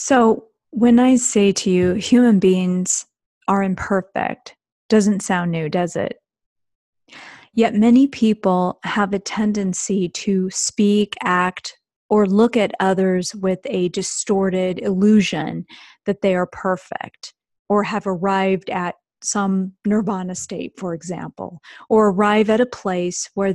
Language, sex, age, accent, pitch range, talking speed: English, female, 30-49, American, 185-220 Hz, 130 wpm